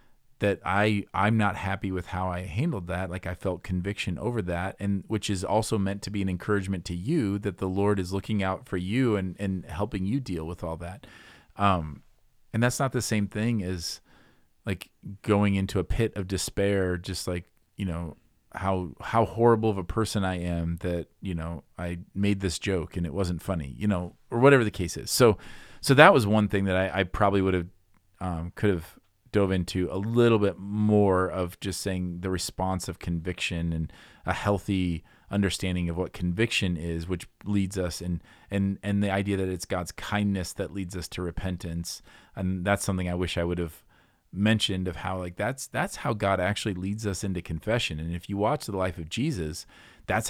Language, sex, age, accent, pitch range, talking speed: English, male, 40-59, American, 90-105 Hz, 205 wpm